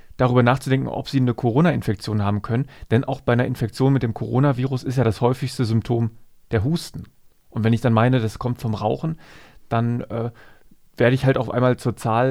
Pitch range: 115-140 Hz